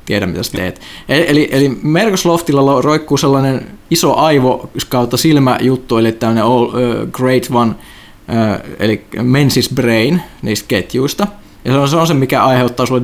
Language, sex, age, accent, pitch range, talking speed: Finnish, male, 20-39, native, 120-150 Hz, 155 wpm